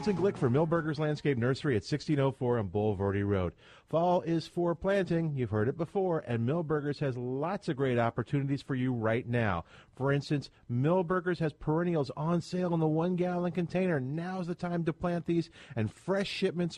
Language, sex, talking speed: English, male, 180 wpm